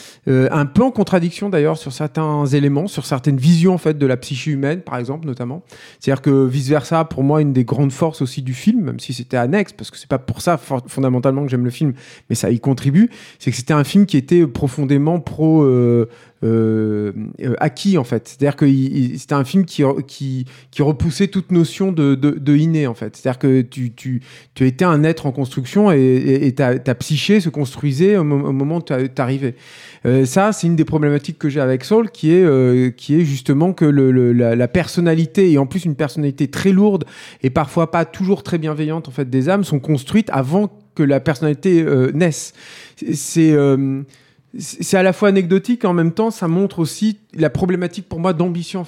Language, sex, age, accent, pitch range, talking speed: French, male, 40-59, French, 135-170 Hz, 215 wpm